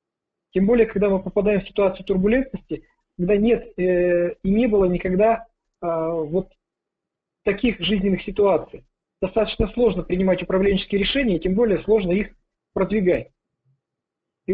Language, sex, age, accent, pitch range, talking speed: Russian, male, 40-59, native, 175-210 Hz, 130 wpm